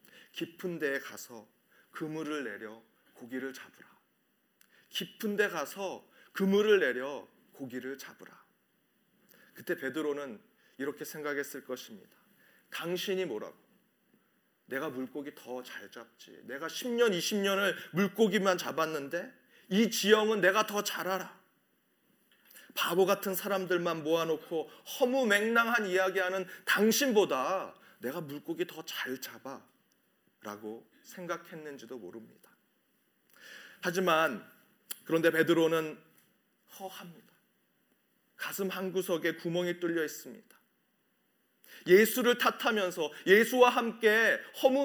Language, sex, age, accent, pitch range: Korean, male, 40-59, native, 150-220 Hz